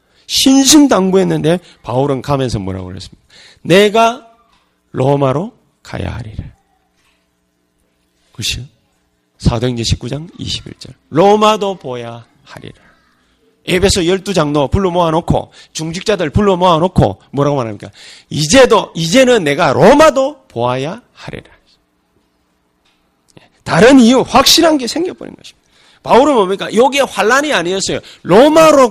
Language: Korean